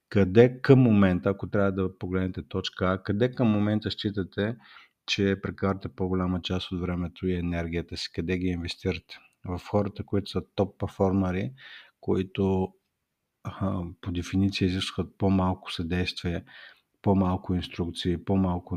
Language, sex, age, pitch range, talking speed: Bulgarian, male, 50-69, 90-110 Hz, 120 wpm